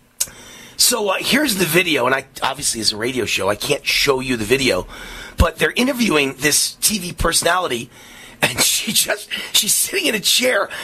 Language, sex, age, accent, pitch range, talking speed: English, male, 30-49, American, 145-210 Hz, 175 wpm